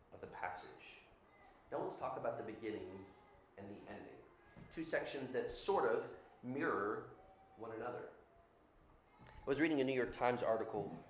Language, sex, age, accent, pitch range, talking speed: English, male, 30-49, American, 95-120 Hz, 140 wpm